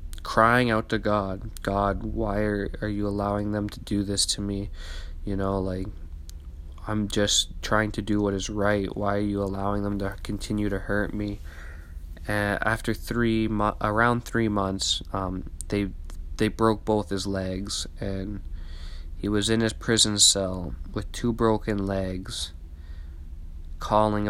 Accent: American